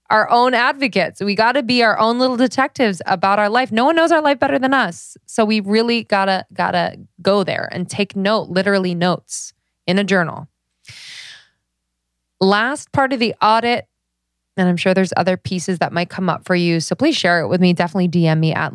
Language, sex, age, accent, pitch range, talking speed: English, female, 20-39, American, 155-215 Hz, 205 wpm